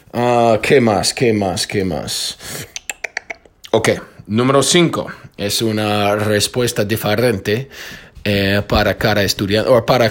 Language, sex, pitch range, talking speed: Spanish, male, 105-135 Hz, 120 wpm